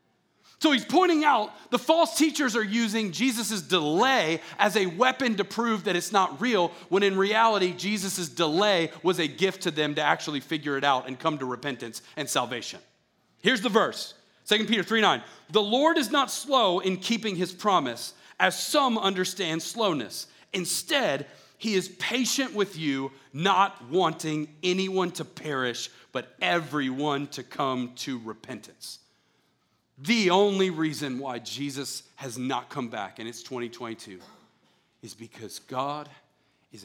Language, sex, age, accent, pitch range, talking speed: English, male, 40-59, American, 120-195 Hz, 155 wpm